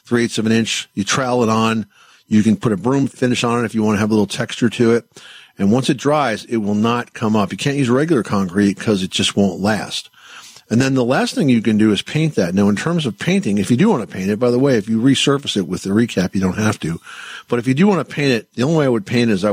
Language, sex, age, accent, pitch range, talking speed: English, male, 50-69, American, 100-125 Hz, 300 wpm